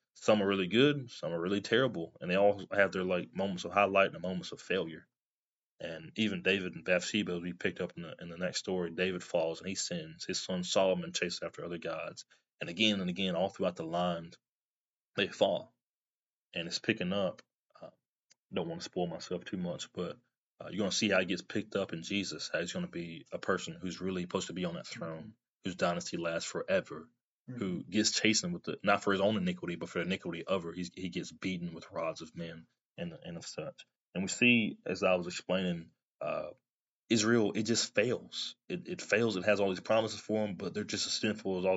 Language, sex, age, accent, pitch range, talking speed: English, male, 20-39, American, 90-105 Hz, 230 wpm